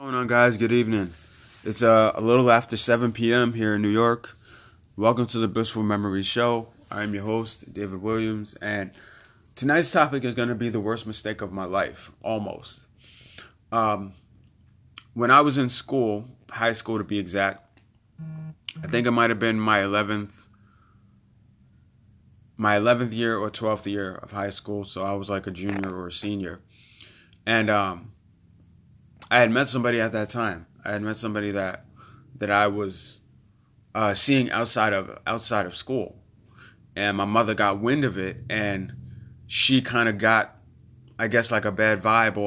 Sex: male